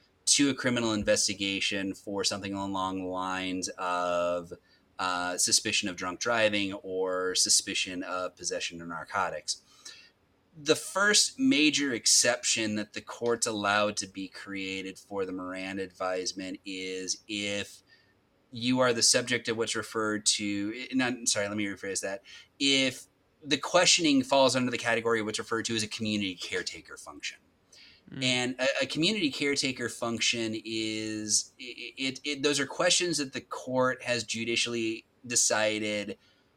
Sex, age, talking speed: male, 30-49, 145 wpm